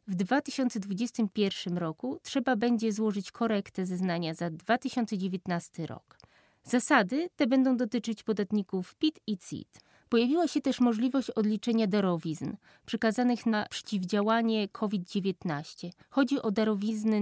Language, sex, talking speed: Polish, female, 110 wpm